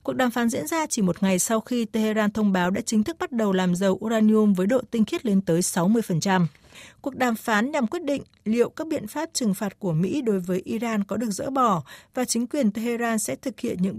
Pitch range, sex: 195-255 Hz, female